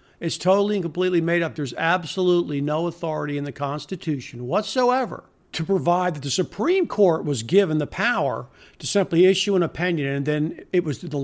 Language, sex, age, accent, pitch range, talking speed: English, male, 50-69, American, 155-195 Hz, 180 wpm